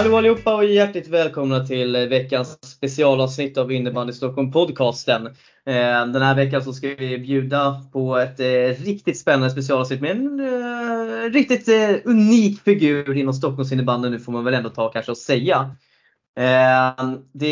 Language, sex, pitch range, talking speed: Swedish, male, 130-175 Hz, 145 wpm